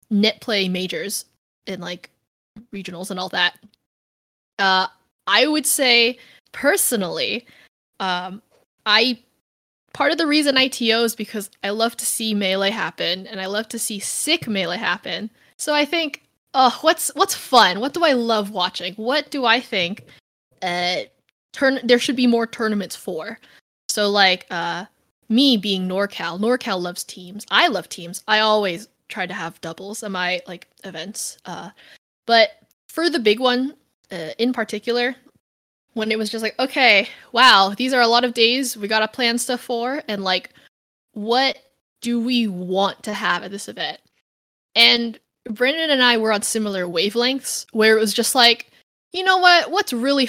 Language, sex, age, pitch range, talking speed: English, female, 20-39, 195-250 Hz, 165 wpm